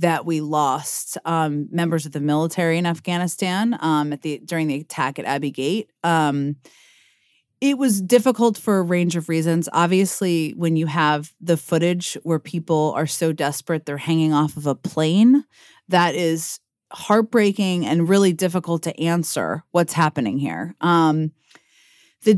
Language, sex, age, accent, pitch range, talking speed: English, female, 30-49, American, 155-185 Hz, 155 wpm